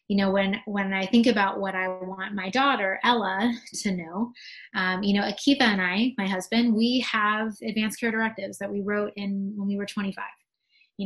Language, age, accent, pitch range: English, 20-39, American, 195-230 Hz